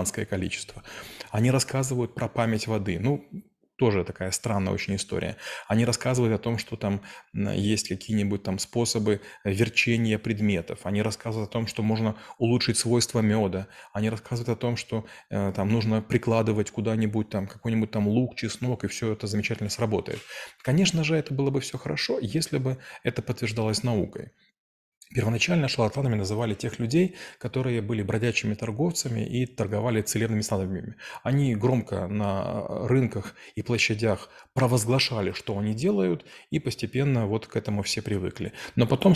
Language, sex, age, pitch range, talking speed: Russian, male, 20-39, 105-125 Hz, 150 wpm